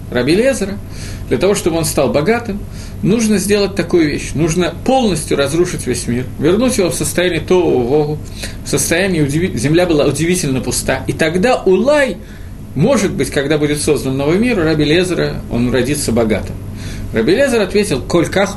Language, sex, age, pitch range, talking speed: Russian, male, 50-69, 110-180 Hz, 155 wpm